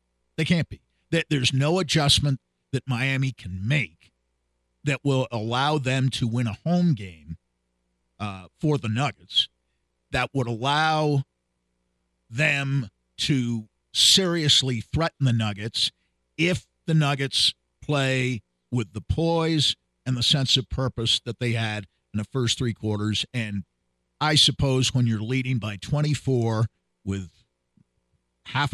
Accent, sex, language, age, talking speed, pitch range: American, male, English, 50-69, 130 wpm, 95-135 Hz